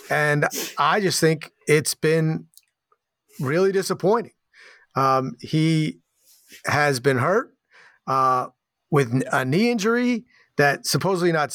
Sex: male